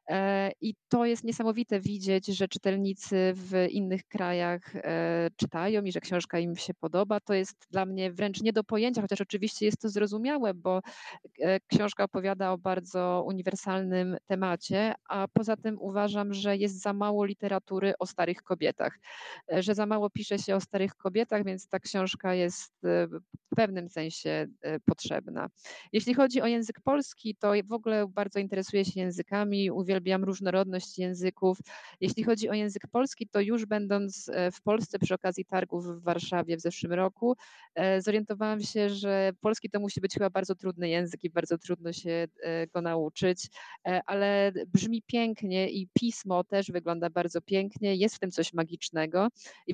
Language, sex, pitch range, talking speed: Polish, female, 180-210 Hz, 155 wpm